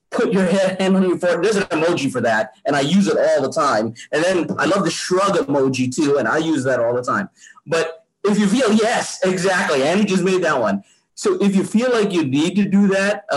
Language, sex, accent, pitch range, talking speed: English, male, American, 145-195 Hz, 245 wpm